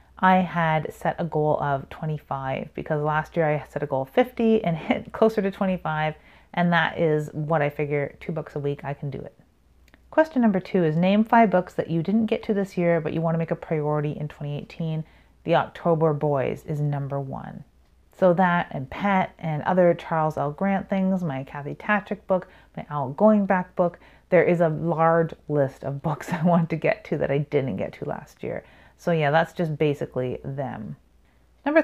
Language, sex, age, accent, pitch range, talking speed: English, female, 30-49, American, 150-185 Hz, 205 wpm